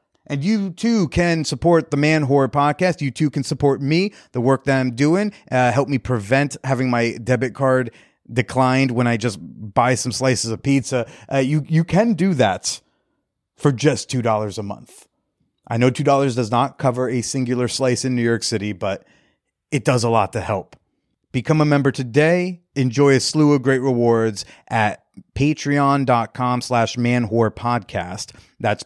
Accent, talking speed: American, 170 wpm